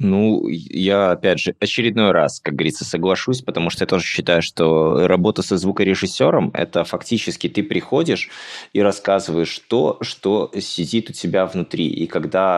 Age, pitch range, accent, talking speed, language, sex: 20-39, 85-115 Hz, native, 155 wpm, Russian, male